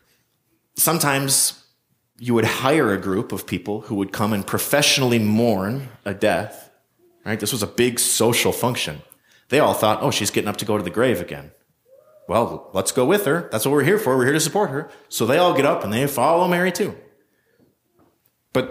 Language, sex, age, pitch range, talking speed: English, male, 30-49, 115-165 Hz, 200 wpm